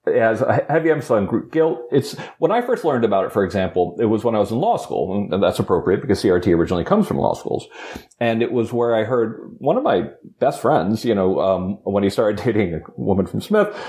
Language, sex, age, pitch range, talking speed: English, male, 40-59, 95-125 Hz, 240 wpm